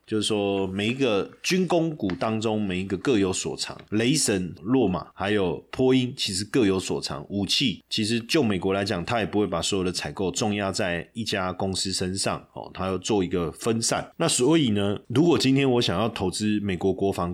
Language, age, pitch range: Chinese, 30-49, 95-125 Hz